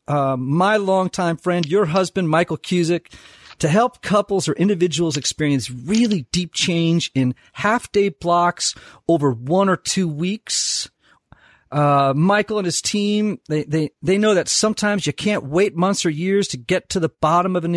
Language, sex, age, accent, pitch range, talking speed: English, male, 40-59, American, 155-205 Hz, 170 wpm